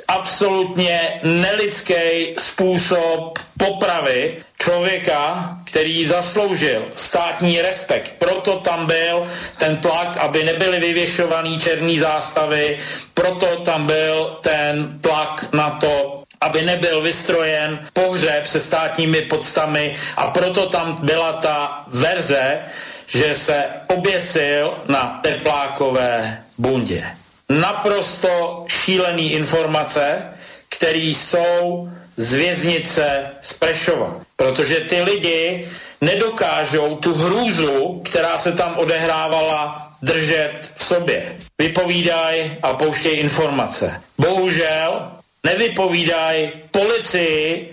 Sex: male